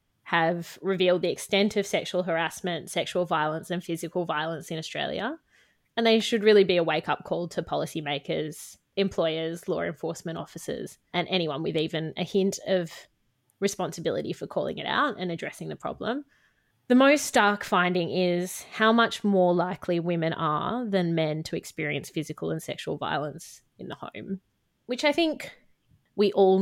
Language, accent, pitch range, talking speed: English, Australian, 160-200 Hz, 160 wpm